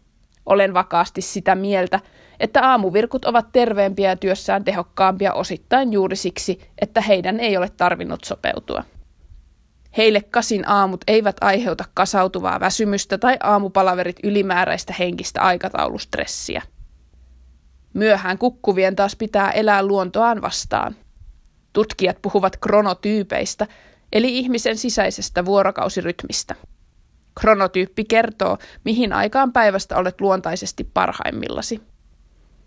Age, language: 20-39, Finnish